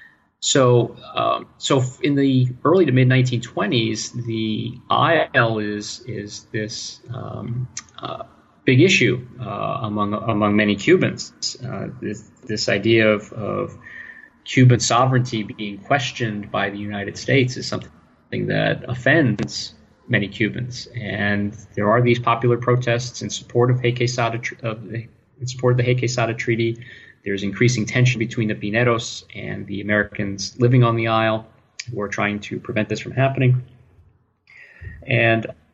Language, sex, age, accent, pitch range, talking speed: English, male, 30-49, American, 105-125 Hz, 145 wpm